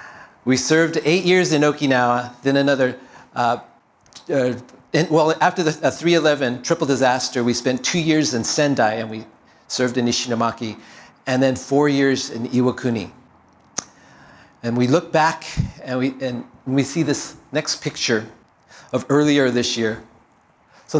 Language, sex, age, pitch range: Japanese, male, 40-59, 120-150 Hz